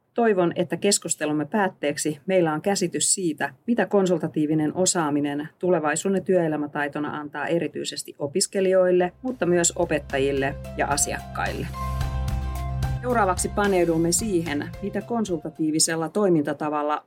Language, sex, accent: Finnish, female, native